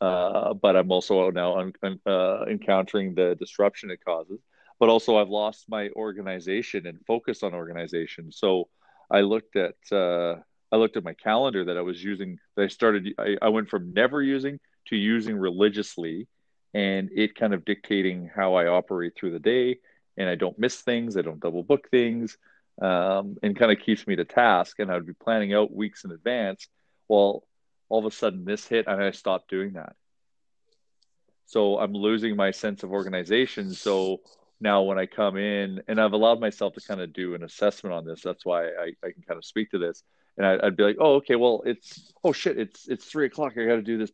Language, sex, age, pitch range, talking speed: English, male, 40-59, 95-110 Hz, 205 wpm